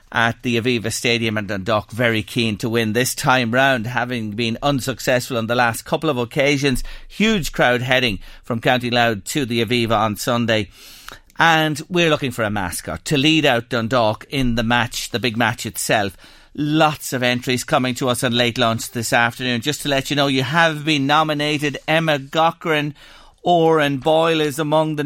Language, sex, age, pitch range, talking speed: English, male, 40-59, 120-150 Hz, 185 wpm